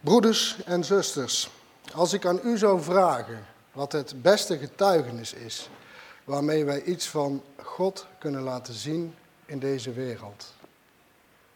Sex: male